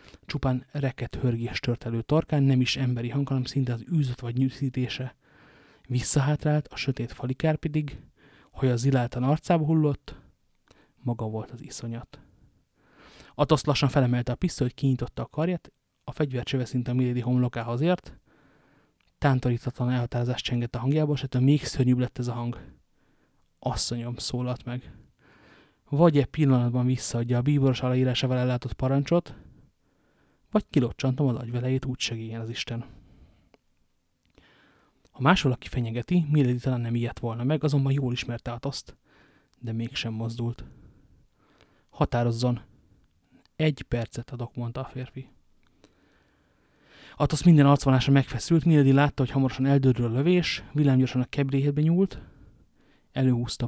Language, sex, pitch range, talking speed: Hungarian, male, 120-140 Hz, 125 wpm